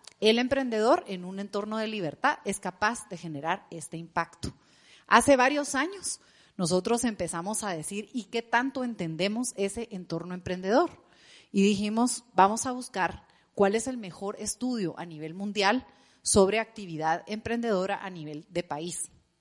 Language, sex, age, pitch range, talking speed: Spanish, female, 40-59, 180-240 Hz, 145 wpm